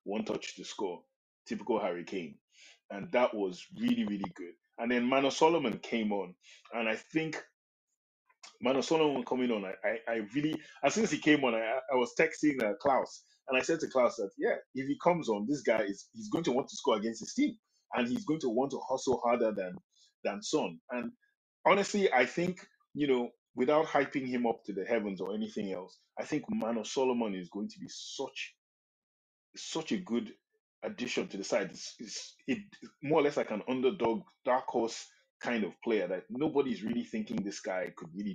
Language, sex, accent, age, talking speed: English, male, Nigerian, 20-39, 200 wpm